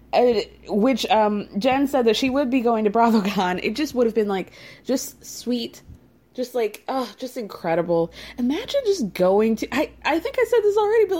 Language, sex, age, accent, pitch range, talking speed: English, female, 20-39, American, 210-280 Hz, 200 wpm